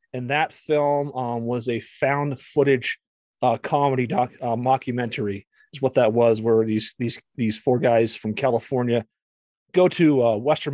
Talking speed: 160 wpm